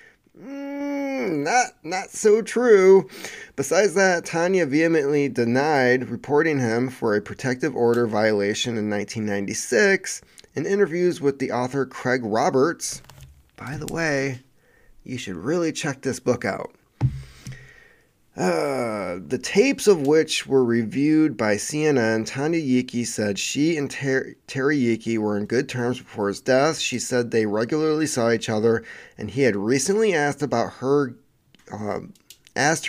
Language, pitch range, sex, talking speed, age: English, 115-155 Hz, male, 140 wpm, 30-49